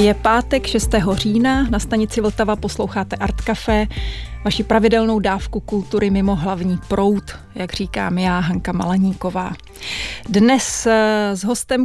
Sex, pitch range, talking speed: female, 190-220 Hz, 125 wpm